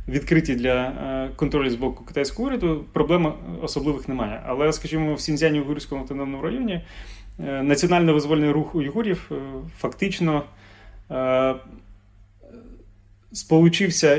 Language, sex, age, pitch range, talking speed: Ukrainian, male, 30-49, 130-160 Hz, 95 wpm